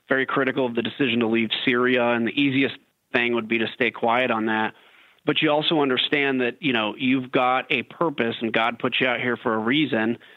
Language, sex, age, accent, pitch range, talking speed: English, male, 30-49, American, 120-145 Hz, 225 wpm